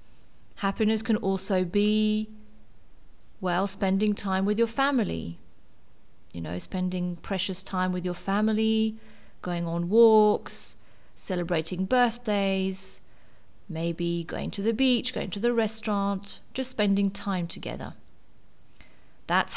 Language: English